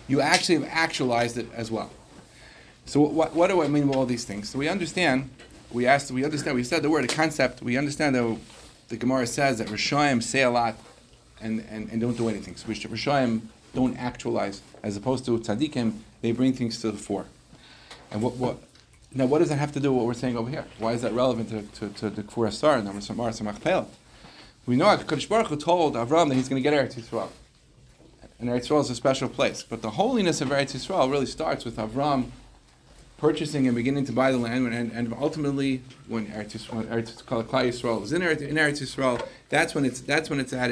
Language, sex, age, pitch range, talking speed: English, male, 40-59, 115-145 Hz, 215 wpm